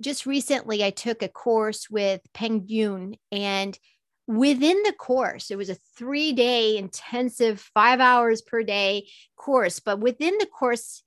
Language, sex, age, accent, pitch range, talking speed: English, female, 40-59, American, 215-260 Hz, 150 wpm